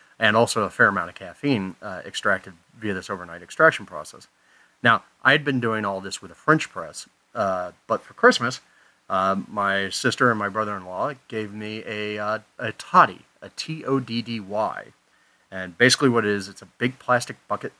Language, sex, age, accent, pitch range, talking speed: English, male, 30-49, American, 100-130 Hz, 180 wpm